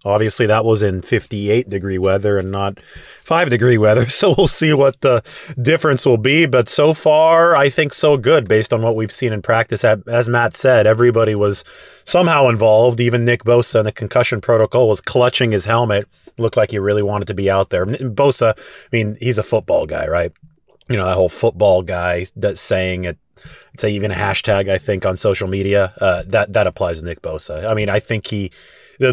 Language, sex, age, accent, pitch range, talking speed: English, male, 30-49, American, 100-125 Hz, 205 wpm